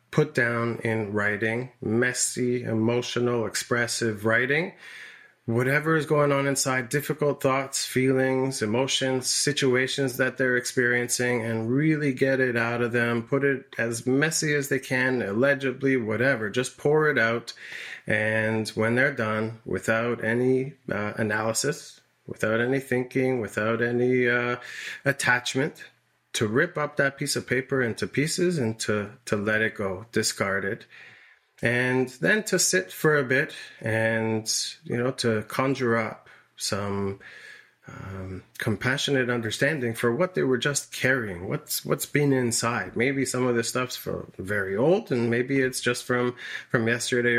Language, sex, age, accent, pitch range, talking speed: English, male, 30-49, American, 115-135 Hz, 145 wpm